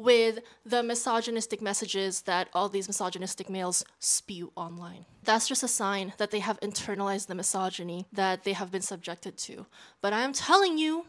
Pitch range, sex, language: 210-285 Hz, female, English